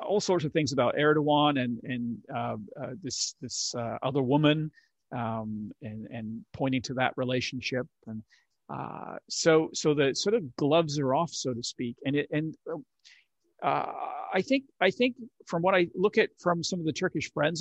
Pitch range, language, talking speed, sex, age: 130-165 Hz, Turkish, 185 wpm, male, 50-69